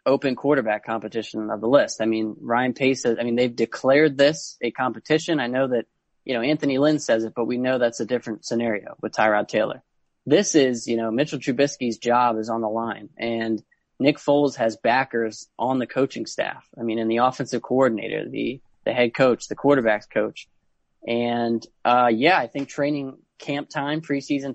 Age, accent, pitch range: 20-39, American, 115-140 Hz